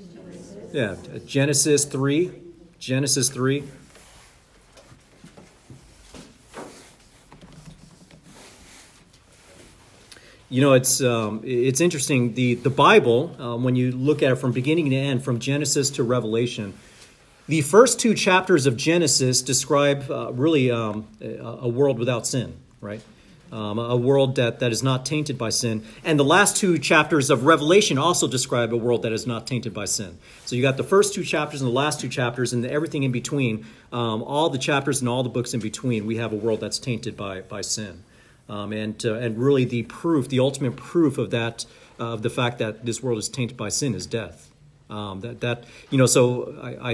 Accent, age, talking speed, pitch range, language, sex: American, 40-59, 175 wpm, 110-140 Hz, English, male